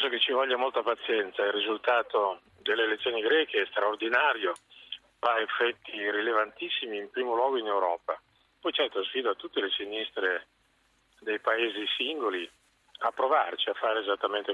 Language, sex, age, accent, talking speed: Italian, male, 40-59, native, 150 wpm